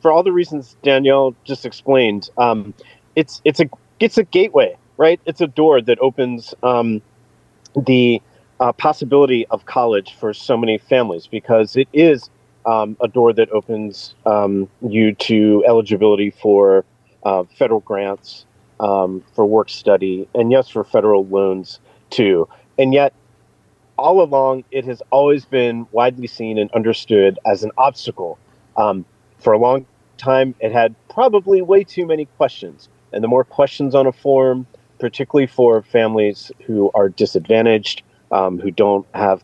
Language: English